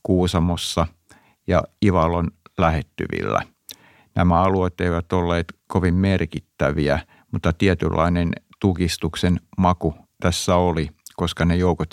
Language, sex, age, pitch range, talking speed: Finnish, male, 50-69, 75-90 Hz, 95 wpm